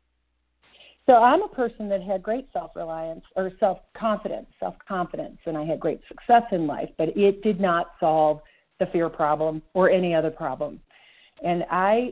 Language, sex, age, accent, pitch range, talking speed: English, female, 40-59, American, 160-195 Hz, 160 wpm